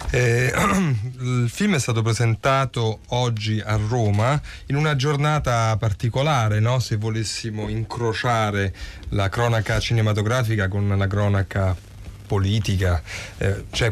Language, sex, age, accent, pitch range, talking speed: English, male, 30-49, Italian, 100-125 Hz, 110 wpm